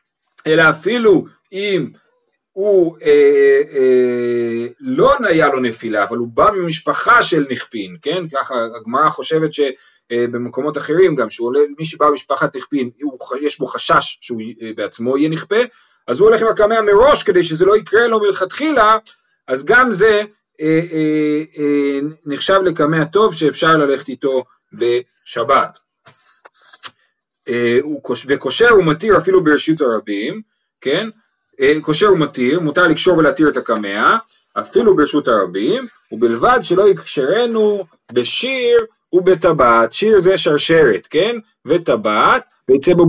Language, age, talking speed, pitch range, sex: Hebrew, 40-59, 120 wpm, 145-235 Hz, male